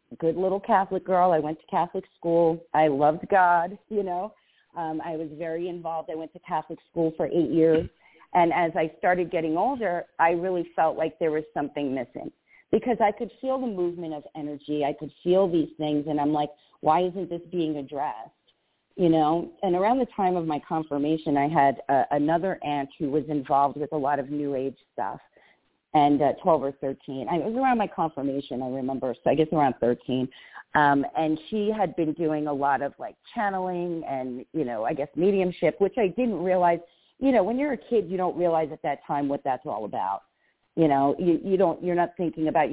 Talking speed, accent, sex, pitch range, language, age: 210 wpm, American, female, 150-185 Hz, English, 40-59